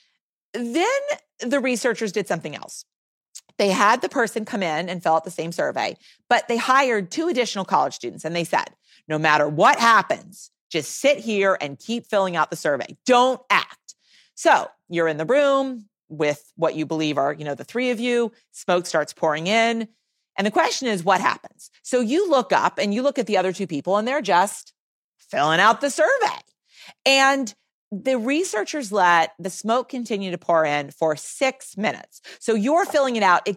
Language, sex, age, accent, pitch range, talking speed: English, female, 40-59, American, 185-270 Hz, 190 wpm